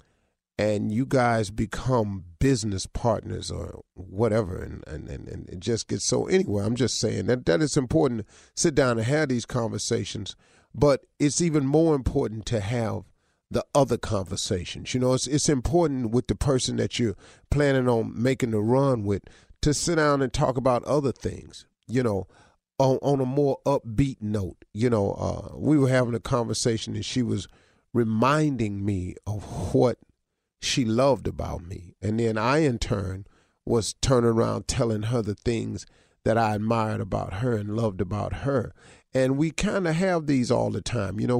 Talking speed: 180 wpm